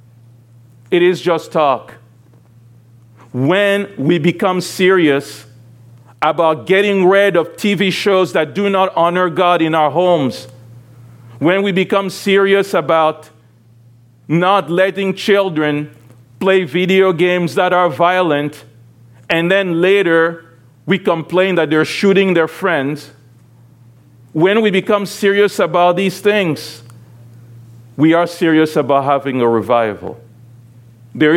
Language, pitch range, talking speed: English, 120-165 Hz, 115 wpm